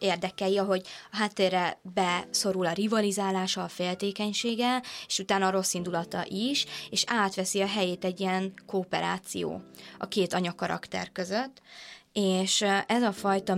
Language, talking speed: Hungarian, 125 wpm